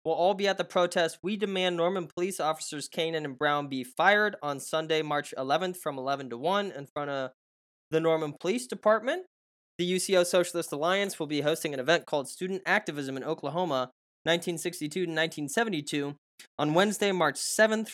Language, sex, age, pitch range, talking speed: English, male, 10-29, 150-190 Hz, 175 wpm